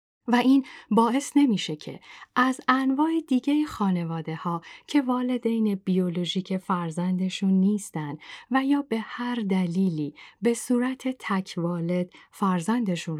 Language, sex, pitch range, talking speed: Persian, female, 175-235 Hz, 115 wpm